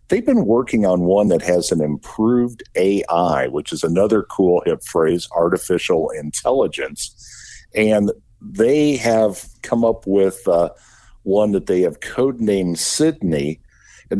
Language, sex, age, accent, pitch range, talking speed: English, male, 50-69, American, 95-115 Hz, 135 wpm